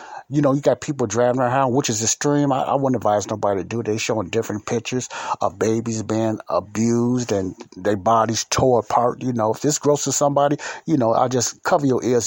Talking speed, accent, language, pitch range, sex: 220 wpm, American, English, 110-125 Hz, male